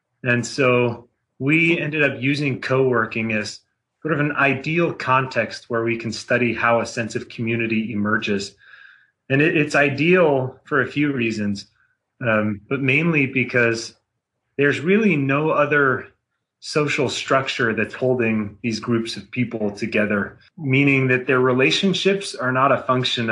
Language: English